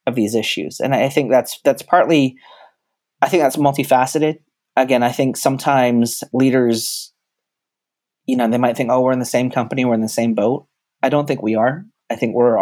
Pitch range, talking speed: 115-140 Hz, 195 wpm